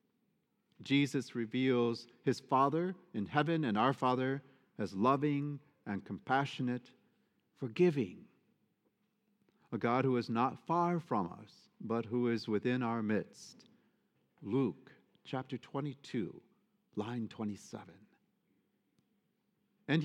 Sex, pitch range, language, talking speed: male, 115-175 Hz, English, 100 wpm